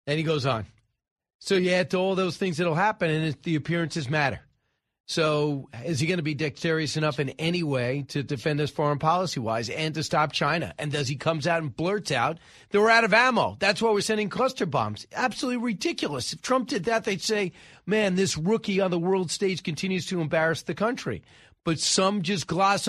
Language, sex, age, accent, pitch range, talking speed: English, male, 40-59, American, 150-195 Hz, 210 wpm